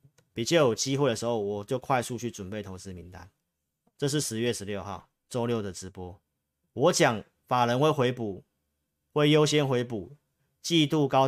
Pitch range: 105-140 Hz